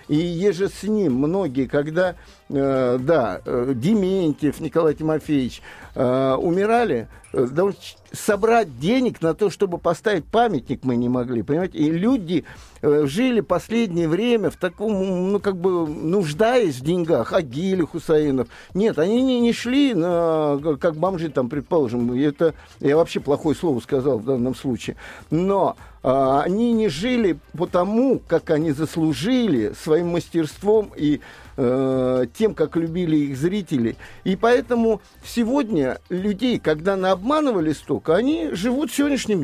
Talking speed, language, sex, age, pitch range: 130 wpm, Russian, male, 50-69, 150-220 Hz